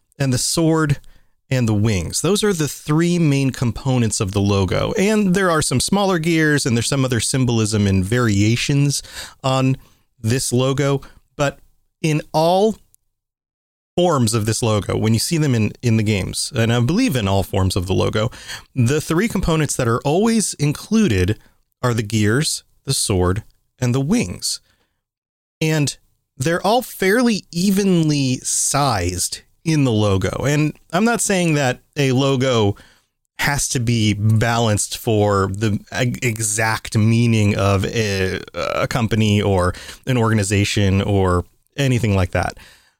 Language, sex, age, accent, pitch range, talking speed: English, male, 30-49, American, 105-145 Hz, 145 wpm